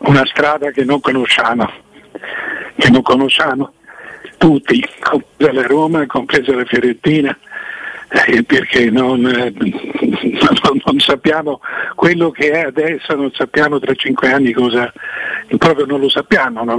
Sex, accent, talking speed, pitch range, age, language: male, native, 120 wpm, 140-180 Hz, 60-79, Italian